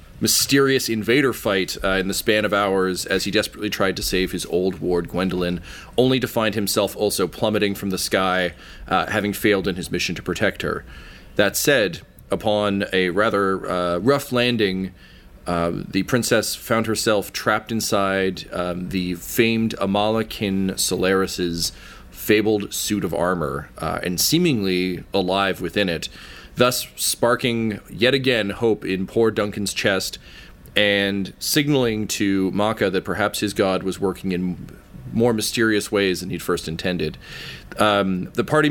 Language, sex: English, male